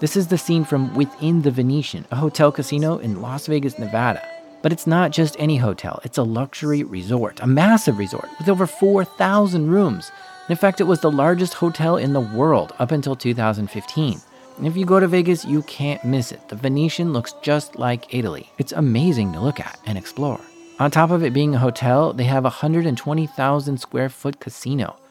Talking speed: 195 wpm